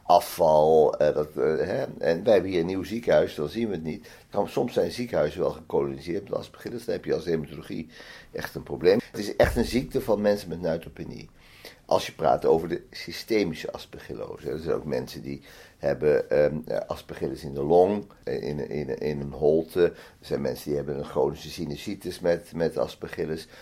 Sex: male